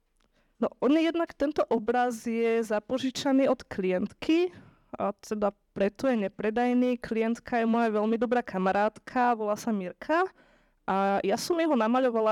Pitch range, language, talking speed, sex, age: 200-245 Hz, Slovak, 140 wpm, female, 20-39